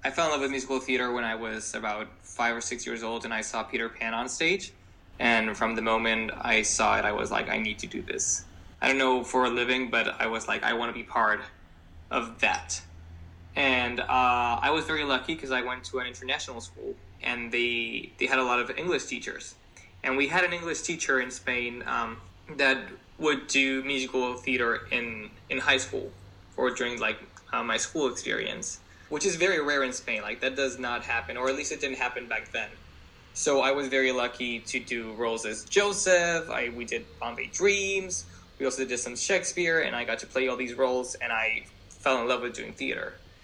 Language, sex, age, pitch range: English, male, 20-39, 110-135 Hz